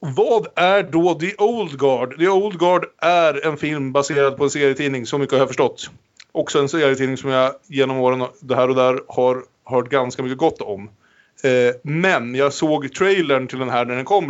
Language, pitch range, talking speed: Swedish, 125-155 Hz, 200 wpm